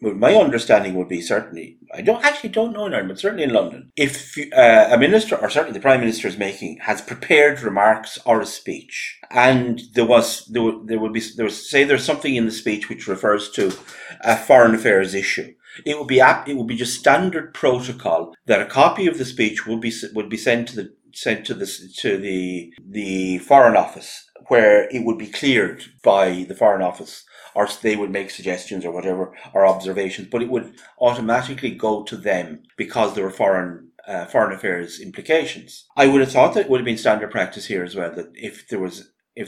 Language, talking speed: English, 210 wpm